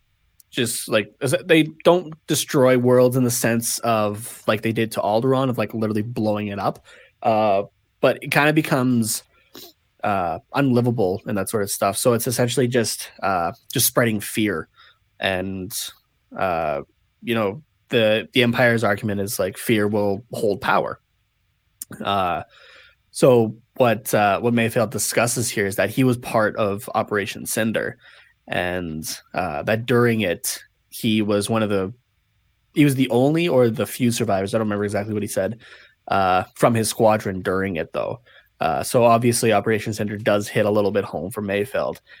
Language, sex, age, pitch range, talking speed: English, male, 20-39, 105-125 Hz, 165 wpm